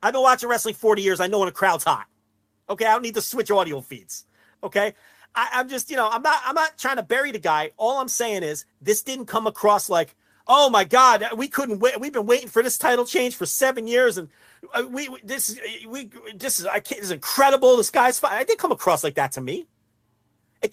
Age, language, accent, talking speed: 40-59, English, American, 245 wpm